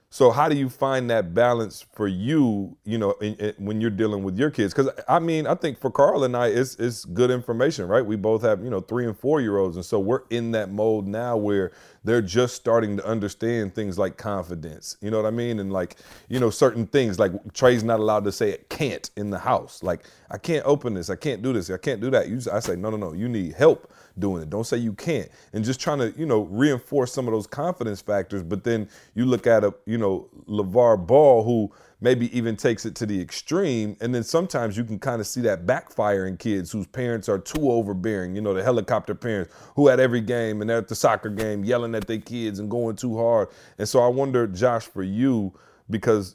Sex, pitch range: male, 100-120 Hz